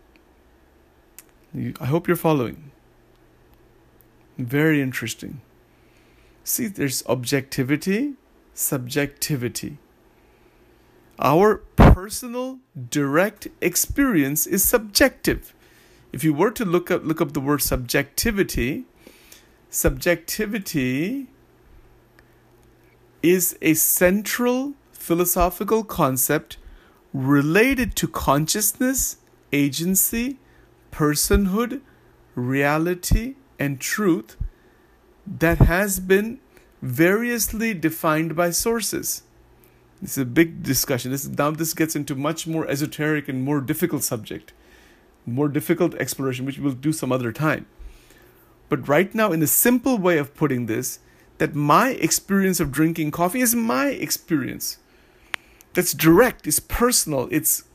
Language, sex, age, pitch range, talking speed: English, male, 50-69, 135-195 Hz, 105 wpm